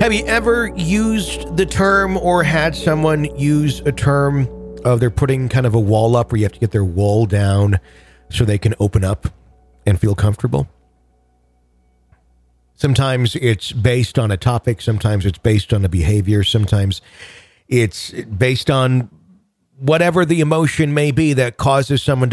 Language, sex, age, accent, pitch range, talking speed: English, male, 40-59, American, 100-140 Hz, 160 wpm